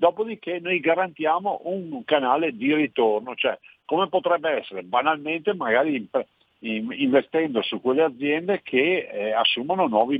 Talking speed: 125 wpm